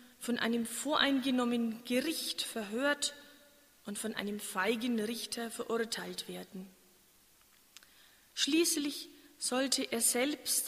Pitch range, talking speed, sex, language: 215-270 Hz, 90 wpm, female, German